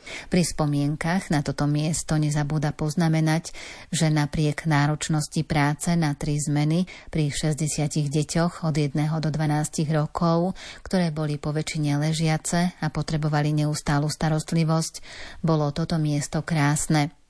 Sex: female